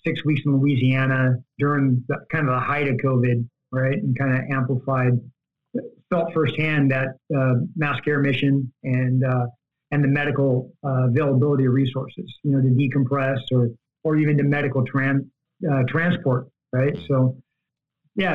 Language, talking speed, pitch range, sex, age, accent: English, 155 wpm, 135-160 Hz, male, 50-69, American